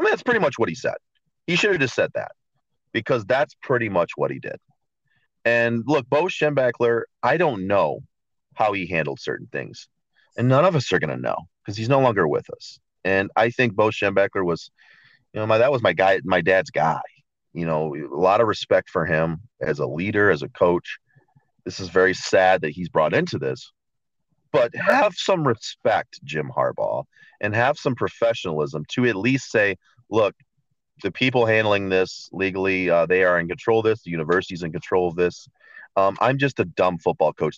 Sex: male